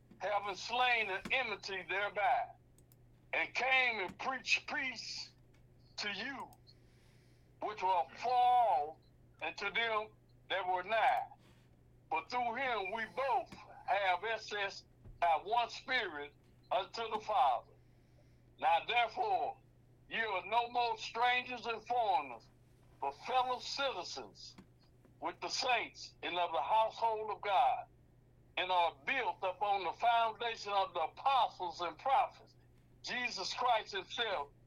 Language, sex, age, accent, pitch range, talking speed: English, male, 60-79, American, 180-245 Hz, 120 wpm